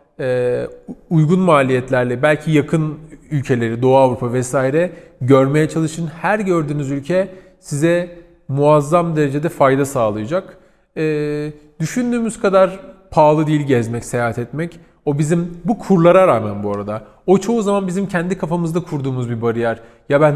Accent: native